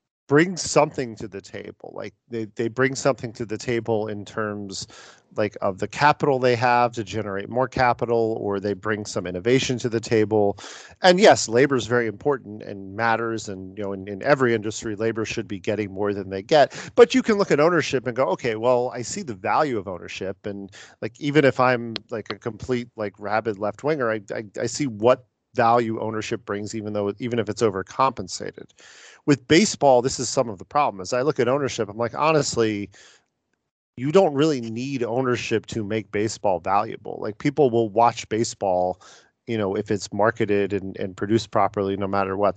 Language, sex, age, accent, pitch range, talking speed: English, male, 40-59, American, 105-130 Hz, 195 wpm